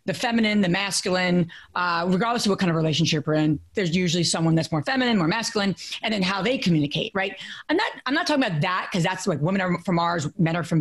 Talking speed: 245 wpm